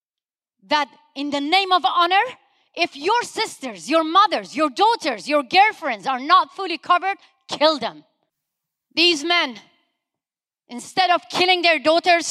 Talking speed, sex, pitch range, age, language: 135 wpm, female, 295-360 Hz, 40-59, English